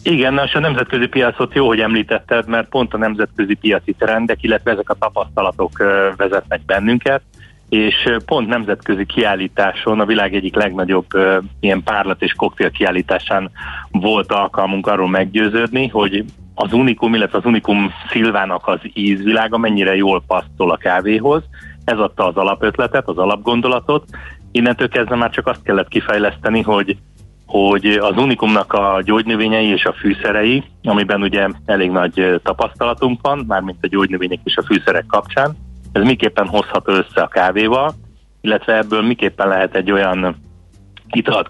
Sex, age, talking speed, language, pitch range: male, 30-49, 145 wpm, Hungarian, 95-115 Hz